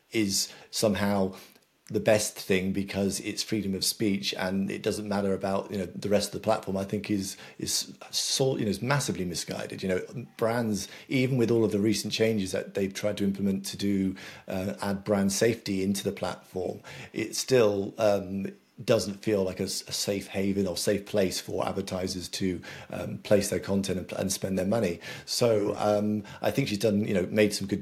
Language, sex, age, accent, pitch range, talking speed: English, male, 40-59, British, 95-105 Hz, 200 wpm